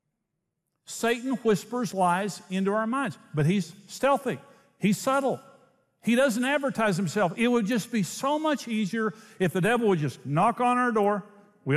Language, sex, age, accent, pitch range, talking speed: English, male, 50-69, American, 155-215 Hz, 165 wpm